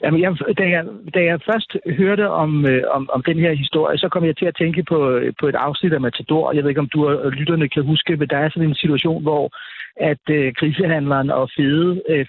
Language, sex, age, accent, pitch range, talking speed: Danish, male, 60-79, native, 145-180 Hz, 235 wpm